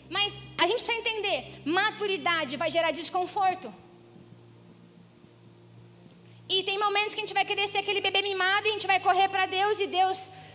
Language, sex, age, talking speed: Portuguese, female, 20-39, 170 wpm